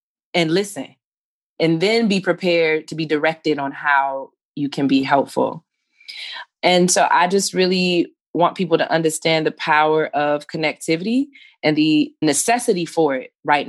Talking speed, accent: 150 wpm, American